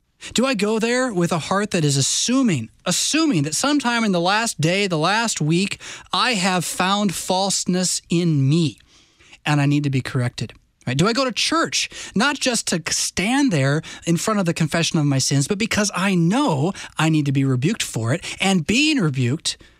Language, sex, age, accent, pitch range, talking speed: English, male, 20-39, American, 145-205 Hz, 195 wpm